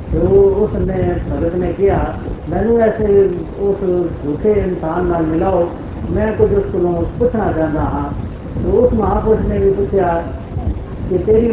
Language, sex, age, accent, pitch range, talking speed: Hindi, female, 70-89, native, 175-215 Hz, 135 wpm